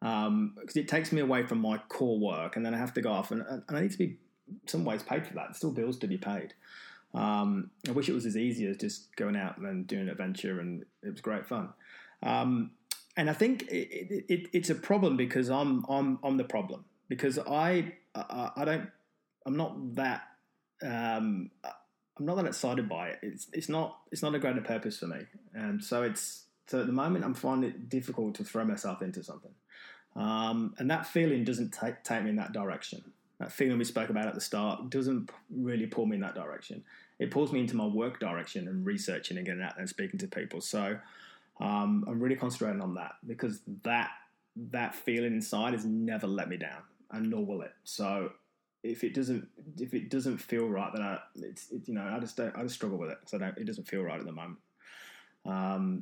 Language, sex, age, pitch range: English, male, 20-39, 115-180 Hz